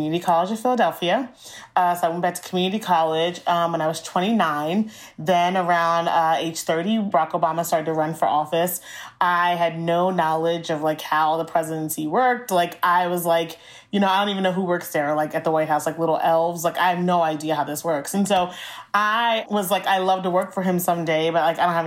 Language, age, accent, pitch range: English, 30-49, American, 165-185 Hz